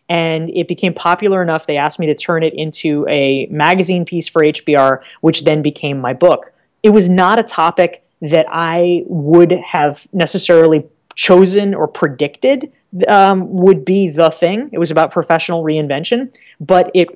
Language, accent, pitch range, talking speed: English, American, 150-190 Hz, 165 wpm